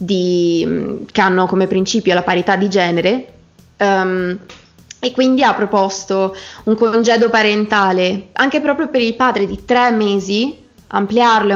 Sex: female